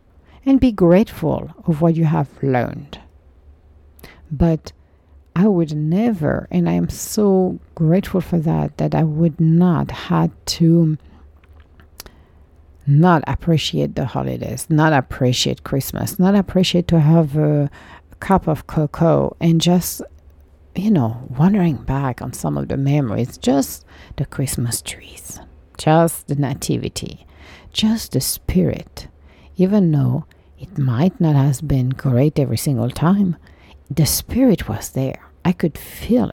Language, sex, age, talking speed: English, female, 50-69, 130 wpm